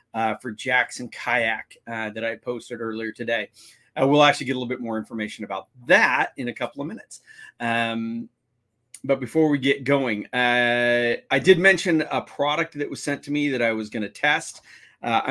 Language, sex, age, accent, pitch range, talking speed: English, male, 40-59, American, 120-140 Hz, 195 wpm